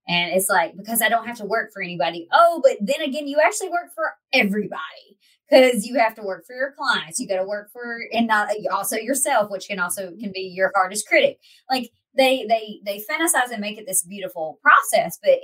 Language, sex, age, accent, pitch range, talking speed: English, male, 20-39, American, 195-265 Hz, 220 wpm